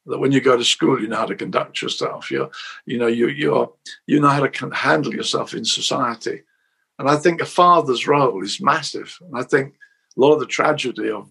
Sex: male